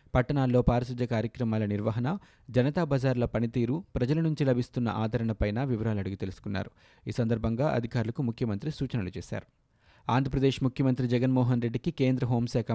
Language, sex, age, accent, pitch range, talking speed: Telugu, male, 20-39, native, 110-130 Hz, 120 wpm